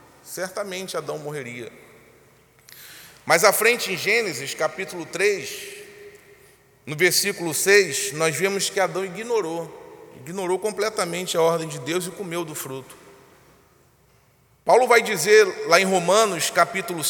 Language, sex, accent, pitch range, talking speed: Portuguese, male, Brazilian, 170-255 Hz, 125 wpm